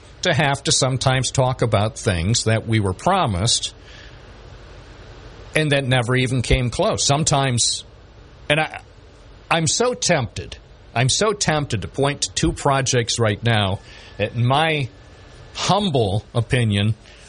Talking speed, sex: 130 wpm, male